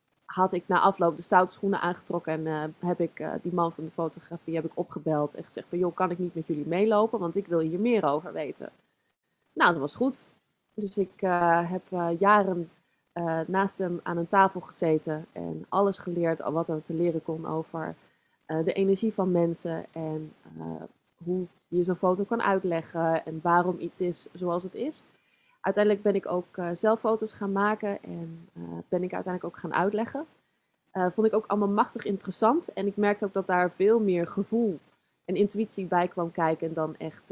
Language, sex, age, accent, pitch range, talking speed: Dutch, female, 20-39, Dutch, 165-195 Hz, 200 wpm